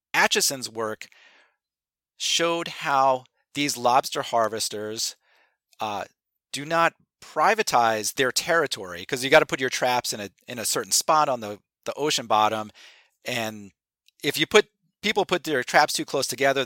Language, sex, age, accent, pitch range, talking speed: English, male, 40-59, American, 115-145 Hz, 150 wpm